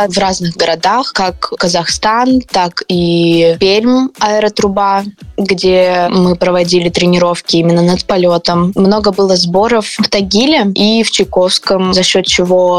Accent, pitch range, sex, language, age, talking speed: native, 175-205 Hz, female, Russian, 20-39, 125 wpm